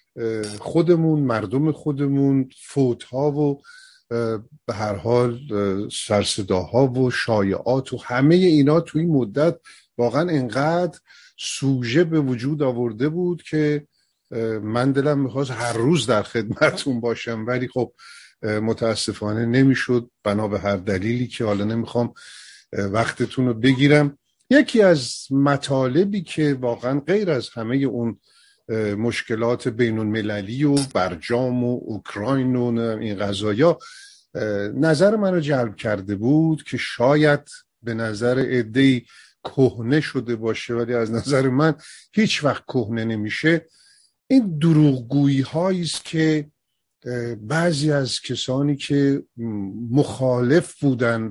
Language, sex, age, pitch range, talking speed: Persian, male, 50-69, 115-150 Hz, 115 wpm